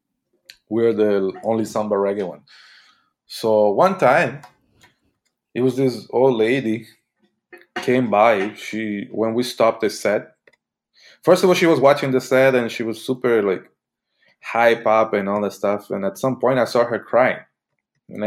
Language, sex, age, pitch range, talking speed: English, male, 20-39, 105-130 Hz, 165 wpm